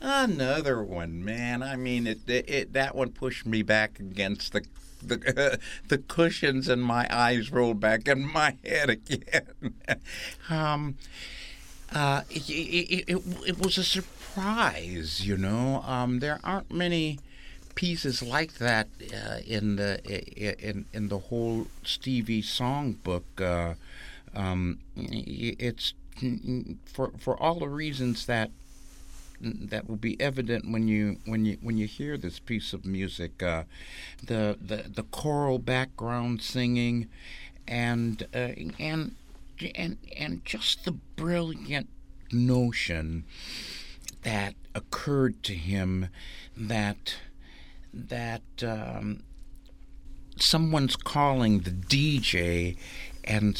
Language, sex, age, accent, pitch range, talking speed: English, male, 60-79, American, 95-130 Hz, 120 wpm